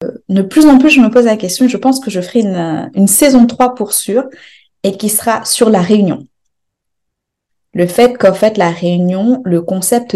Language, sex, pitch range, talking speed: French, female, 185-230 Hz, 200 wpm